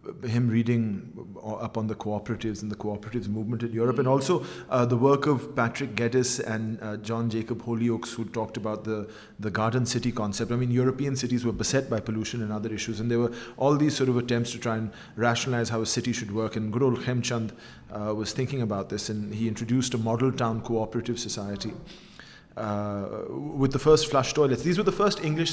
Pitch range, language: 110-130 Hz, Urdu